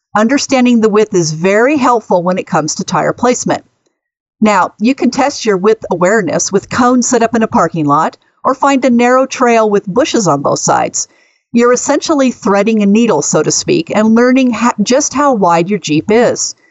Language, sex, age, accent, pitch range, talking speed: English, female, 50-69, American, 185-245 Hz, 190 wpm